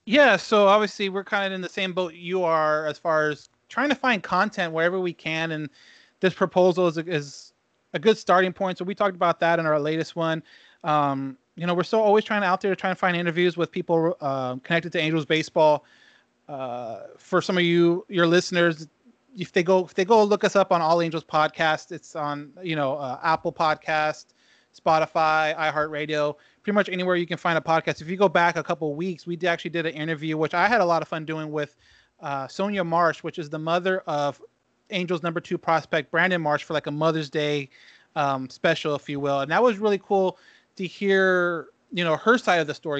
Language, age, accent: English, 30-49, American